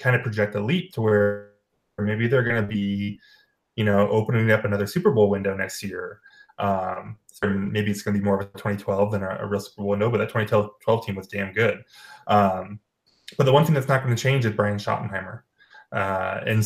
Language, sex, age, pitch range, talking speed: English, male, 20-39, 100-125 Hz, 225 wpm